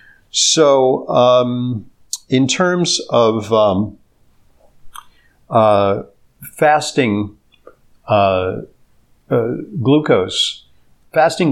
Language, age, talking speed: English, 50-69, 65 wpm